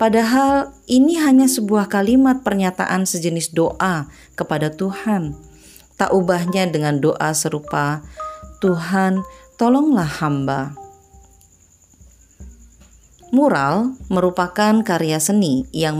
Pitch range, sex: 145-200 Hz, female